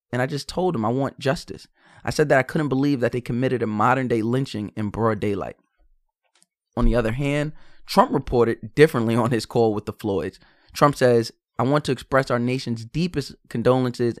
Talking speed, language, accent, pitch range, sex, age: 200 wpm, English, American, 115-150 Hz, male, 20-39